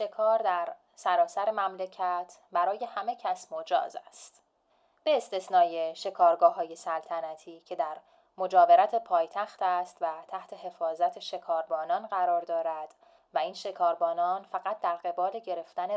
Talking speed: 120 wpm